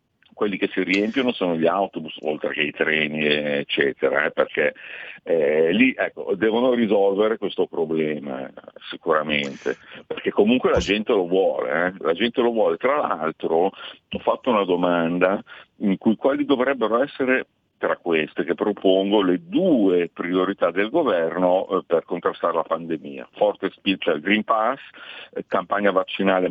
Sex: male